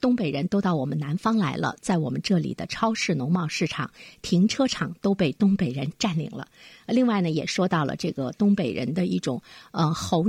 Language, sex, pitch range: Chinese, female, 160-225 Hz